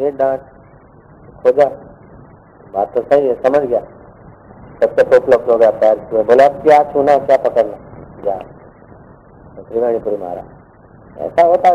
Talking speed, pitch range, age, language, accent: 80 wpm, 135-170 Hz, 40-59, Hindi, native